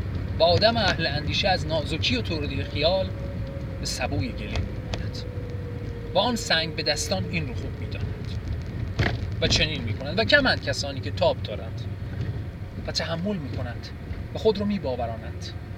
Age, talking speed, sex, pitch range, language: 30-49, 155 wpm, male, 100-160 Hz, Persian